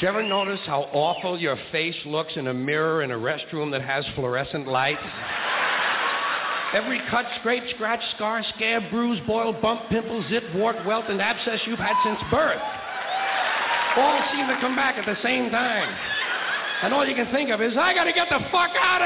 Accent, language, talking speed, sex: American, English, 190 wpm, male